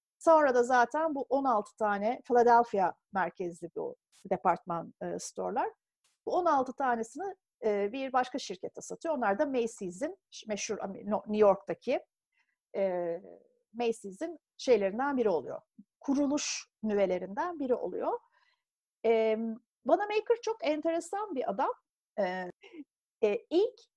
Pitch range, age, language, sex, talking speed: 205-335 Hz, 50-69, Turkish, female, 100 wpm